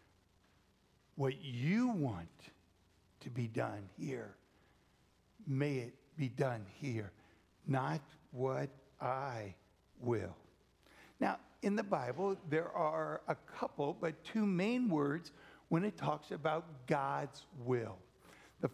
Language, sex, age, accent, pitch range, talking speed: English, male, 60-79, American, 140-195 Hz, 110 wpm